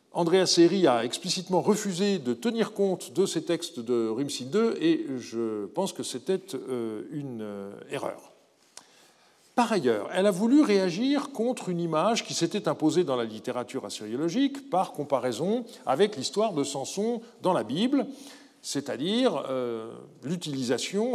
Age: 50-69